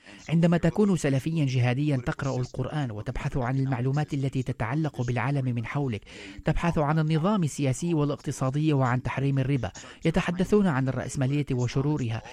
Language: Arabic